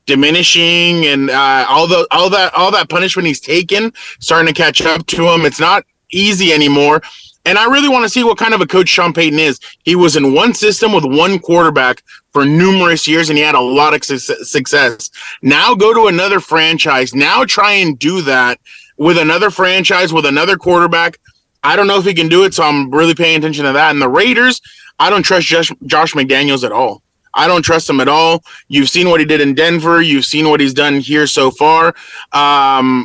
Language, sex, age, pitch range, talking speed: English, male, 20-39, 145-180 Hz, 215 wpm